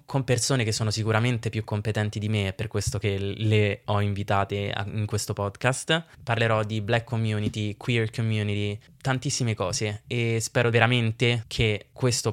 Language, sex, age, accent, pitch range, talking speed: Italian, male, 20-39, native, 105-125 Hz, 150 wpm